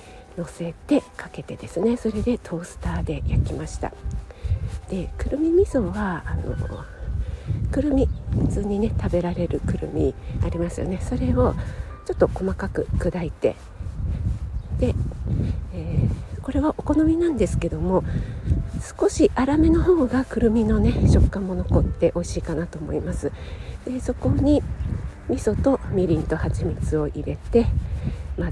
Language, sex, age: Japanese, female, 50-69